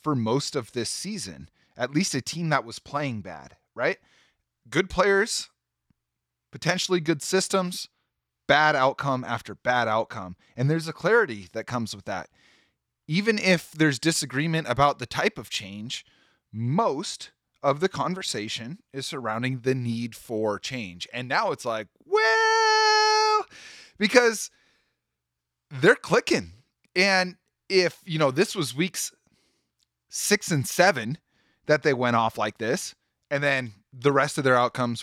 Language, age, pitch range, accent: English, 30-49, 115-165 Hz, American